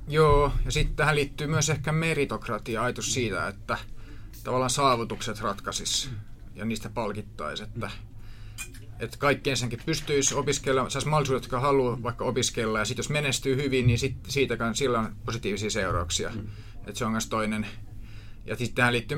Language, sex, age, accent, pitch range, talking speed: Finnish, male, 30-49, native, 110-135 Hz, 150 wpm